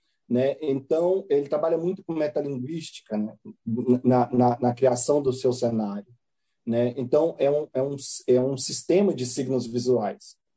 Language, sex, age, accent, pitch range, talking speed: Portuguese, male, 40-59, Brazilian, 130-175 Hz, 155 wpm